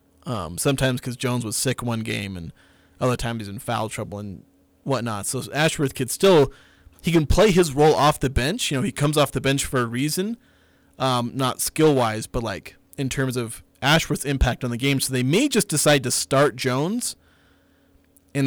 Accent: American